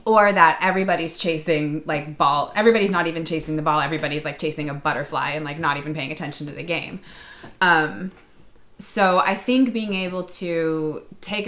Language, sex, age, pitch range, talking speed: English, female, 20-39, 150-180 Hz, 180 wpm